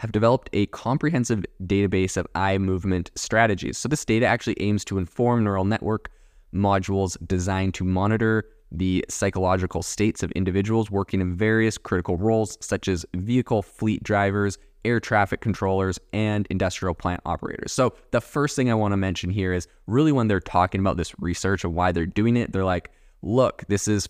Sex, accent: male, American